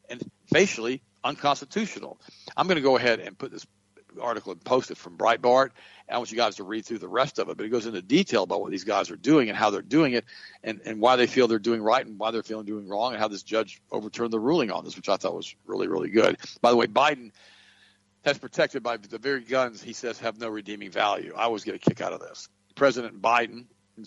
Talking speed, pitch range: 255 wpm, 110-125 Hz